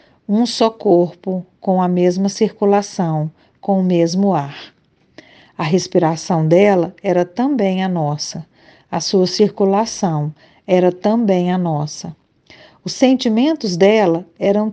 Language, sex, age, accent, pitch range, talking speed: Portuguese, female, 50-69, Brazilian, 180-215 Hz, 120 wpm